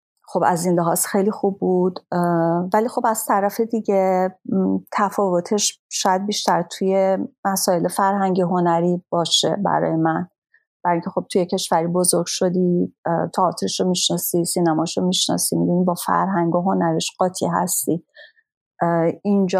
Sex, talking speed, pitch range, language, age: female, 130 wpm, 155-190 Hz, Persian, 40-59